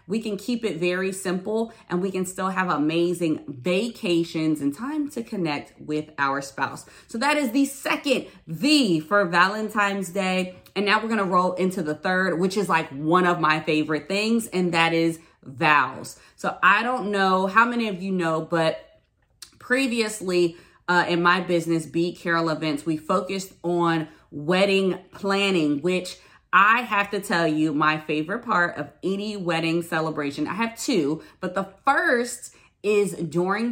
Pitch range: 165-215 Hz